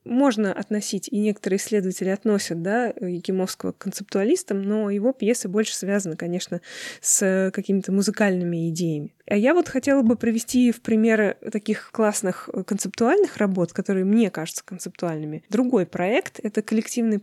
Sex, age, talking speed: female, 20-39, 145 wpm